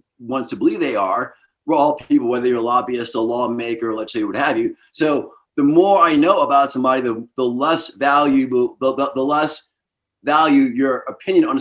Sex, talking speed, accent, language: male, 195 wpm, American, English